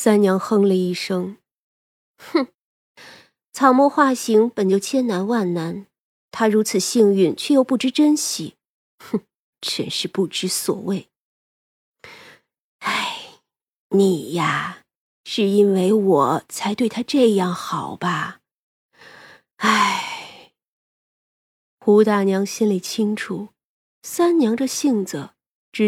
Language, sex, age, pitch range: Chinese, female, 30-49, 185-245 Hz